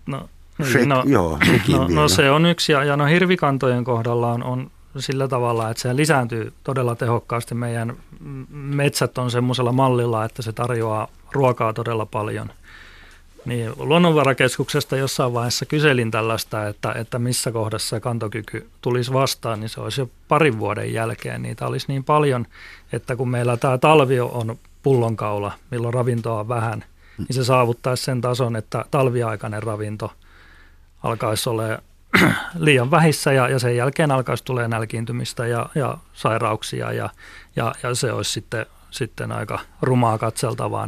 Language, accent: Finnish, native